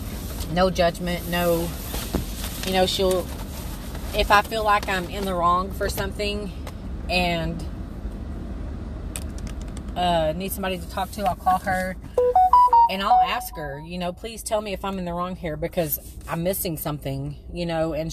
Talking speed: 160 wpm